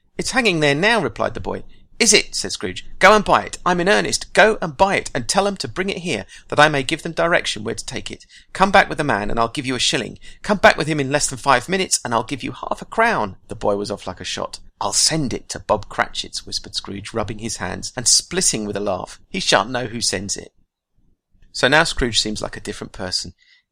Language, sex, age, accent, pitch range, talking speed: English, male, 40-59, British, 100-150 Hz, 260 wpm